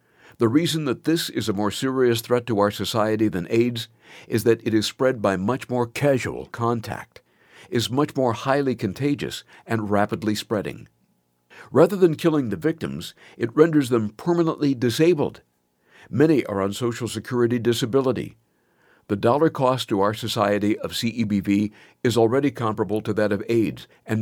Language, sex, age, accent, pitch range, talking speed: English, male, 60-79, American, 105-135 Hz, 160 wpm